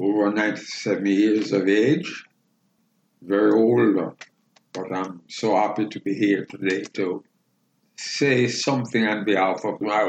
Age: 60-79